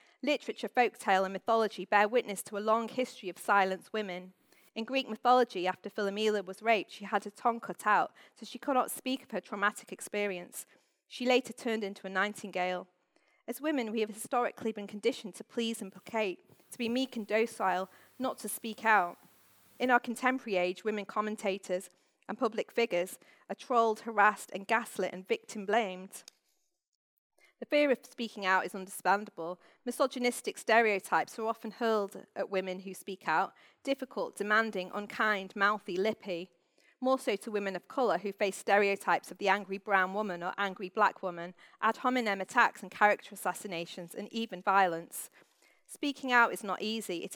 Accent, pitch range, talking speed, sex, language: British, 190-235 Hz, 165 wpm, female, English